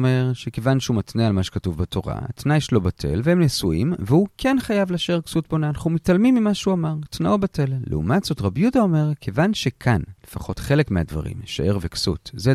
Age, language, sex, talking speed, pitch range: 40-59, Hebrew, male, 185 wpm, 105-175 Hz